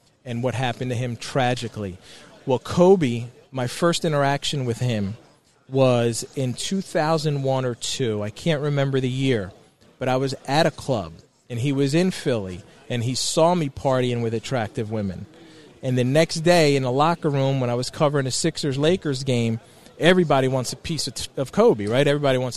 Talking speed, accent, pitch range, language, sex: 175 wpm, American, 125-155 Hz, English, male